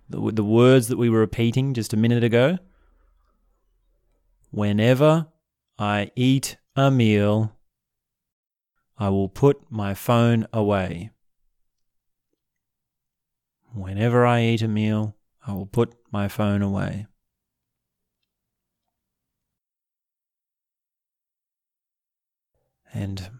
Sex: male